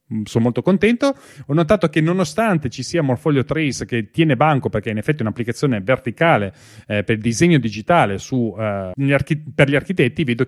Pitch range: 115-155 Hz